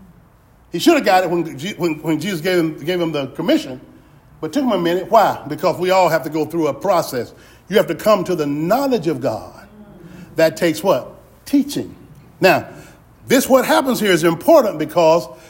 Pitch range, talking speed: 165-255 Hz, 200 wpm